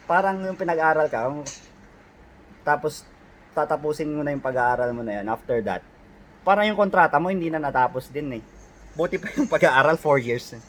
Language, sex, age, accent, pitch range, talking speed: Filipino, male, 20-39, native, 135-200 Hz, 170 wpm